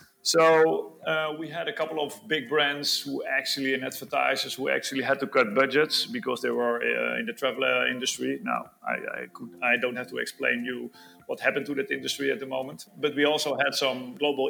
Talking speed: 210 wpm